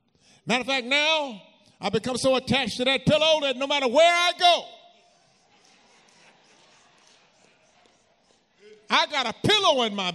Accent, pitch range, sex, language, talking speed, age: American, 190-265 Hz, male, English, 135 wpm, 50-69